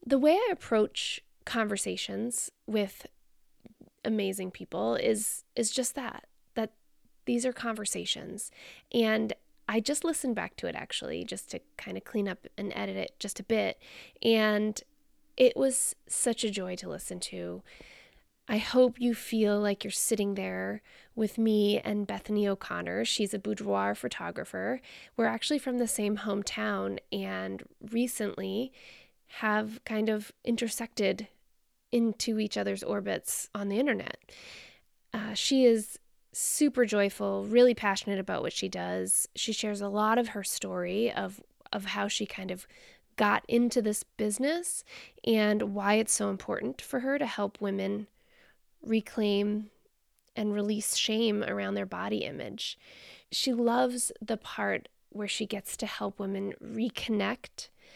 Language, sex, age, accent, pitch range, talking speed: English, female, 20-39, American, 200-240 Hz, 145 wpm